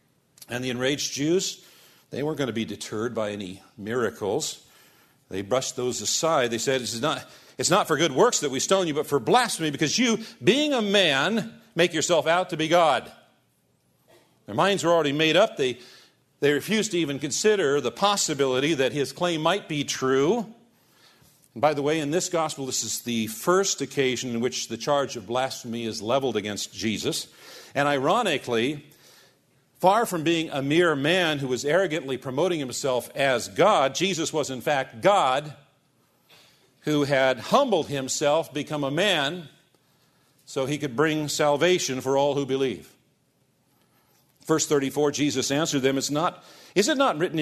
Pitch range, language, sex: 130-170 Hz, English, male